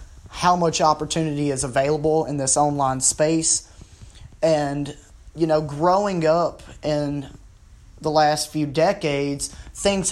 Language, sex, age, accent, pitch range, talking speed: English, male, 30-49, American, 140-160 Hz, 120 wpm